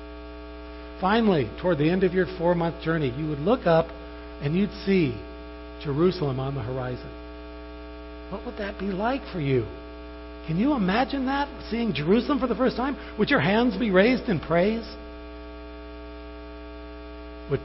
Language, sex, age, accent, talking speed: English, male, 60-79, American, 150 wpm